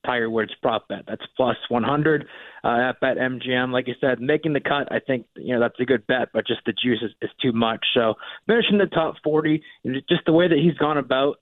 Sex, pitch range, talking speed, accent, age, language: male, 115-135 Hz, 240 wpm, American, 20-39, English